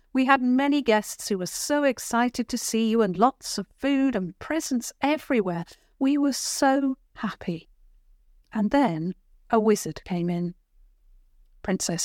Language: English